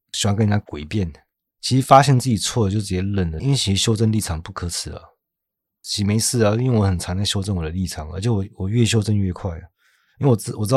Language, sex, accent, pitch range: Chinese, male, native, 90-115 Hz